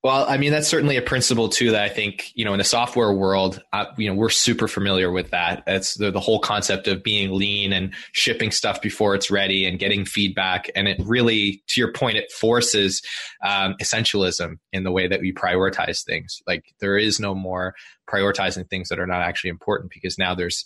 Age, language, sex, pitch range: 20-39, English, male, 100-120 Hz